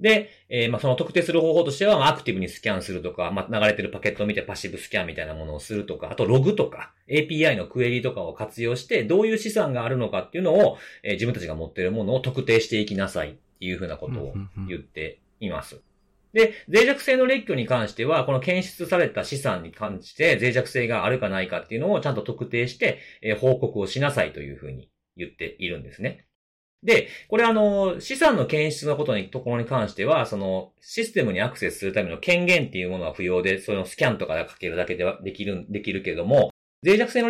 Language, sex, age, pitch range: Japanese, male, 40-59, 95-165 Hz